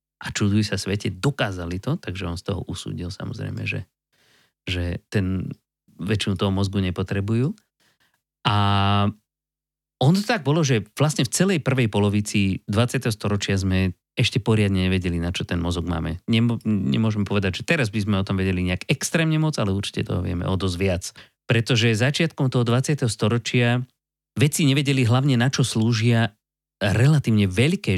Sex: male